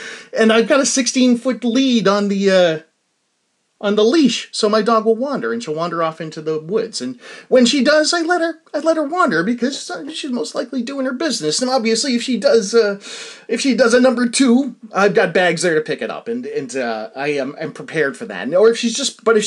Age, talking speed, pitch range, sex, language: 30-49, 240 wpm, 160-265 Hz, male, English